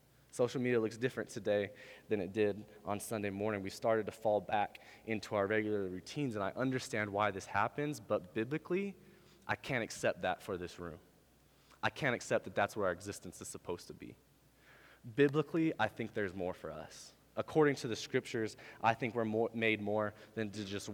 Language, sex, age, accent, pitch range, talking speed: English, male, 20-39, American, 95-115 Hz, 190 wpm